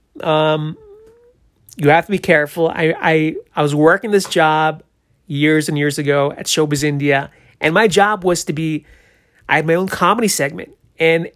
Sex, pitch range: male, 145-175 Hz